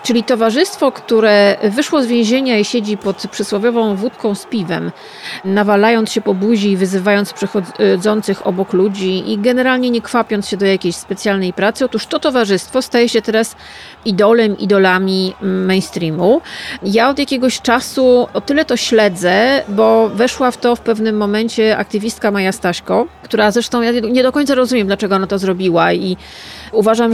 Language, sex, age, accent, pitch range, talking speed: Polish, female, 40-59, native, 200-235 Hz, 155 wpm